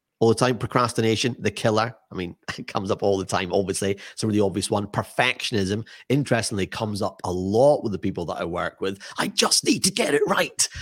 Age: 30-49